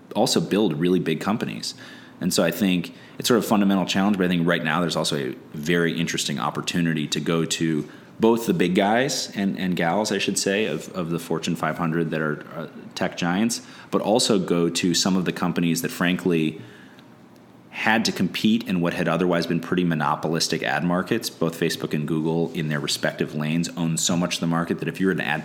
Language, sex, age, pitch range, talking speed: English, male, 30-49, 80-90 Hz, 215 wpm